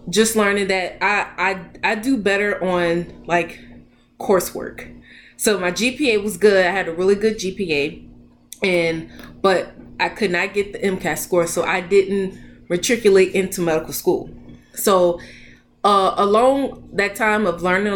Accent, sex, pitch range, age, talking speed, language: American, female, 160-195 Hz, 20-39, 150 wpm, English